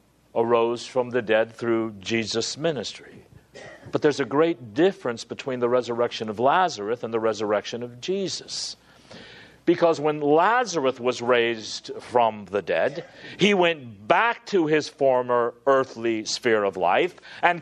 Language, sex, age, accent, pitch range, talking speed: English, male, 50-69, American, 120-180 Hz, 140 wpm